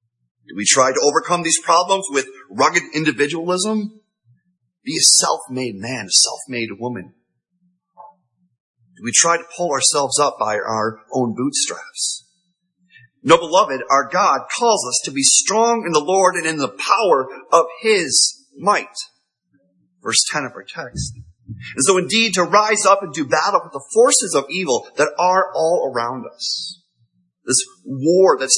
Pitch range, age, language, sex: 130-185 Hz, 30-49, English, male